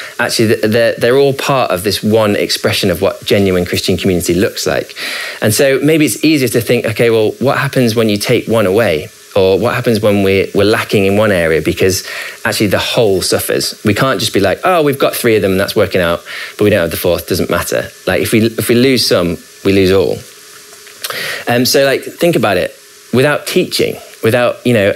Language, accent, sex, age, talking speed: English, British, male, 20-39, 215 wpm